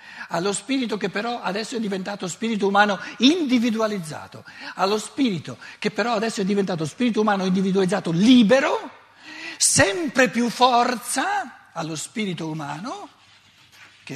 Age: 60-79